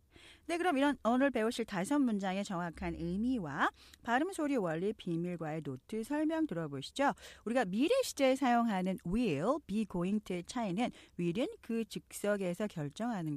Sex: female